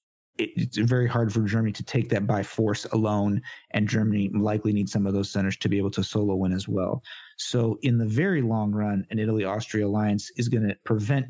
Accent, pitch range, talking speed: American, 100-120 Hz, 210 wpm